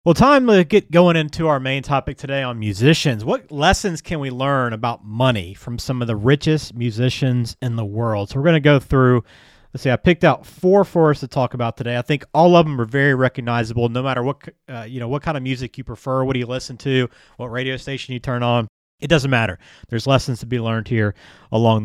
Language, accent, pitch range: English, American, 120-160 Hz